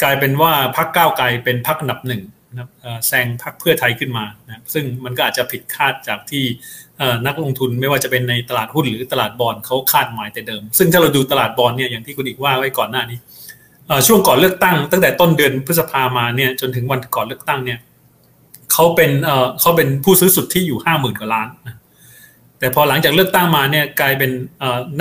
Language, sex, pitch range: Thai, male, 125-160 Hz